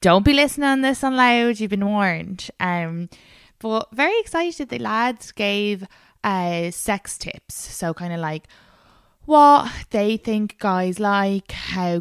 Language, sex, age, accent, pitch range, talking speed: English, female, 20-39, Irish, 150-205 Hz, 150 wpm